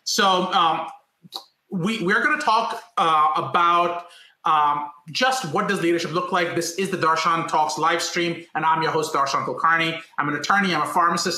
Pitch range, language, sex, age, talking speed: 150-180 Hz, English, male, 30-49, 185 wpm